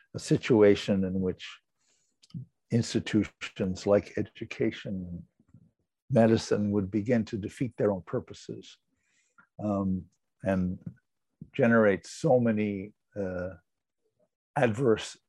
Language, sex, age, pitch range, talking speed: English, male, 60-79, 100-130 Hz, 85 wpm